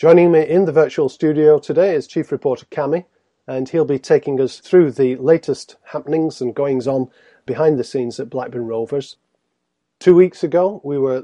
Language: English